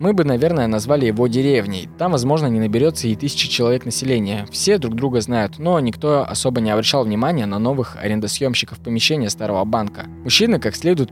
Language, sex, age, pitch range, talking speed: Russian, male, 20-39, 110-140 Hz, 180 wpm